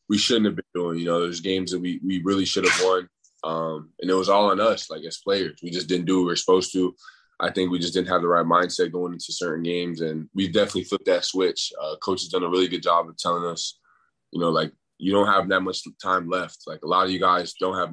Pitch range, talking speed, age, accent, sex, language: 85-95 Hz, 275 wpm, 20-39, American, male, English